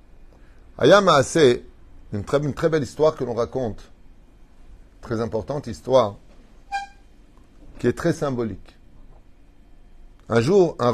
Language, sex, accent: French, male, French